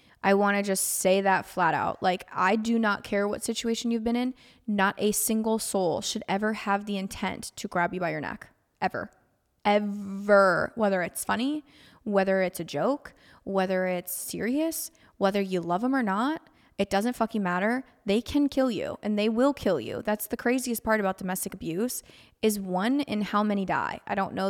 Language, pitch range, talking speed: English, 195-230 Hz, 195 wpm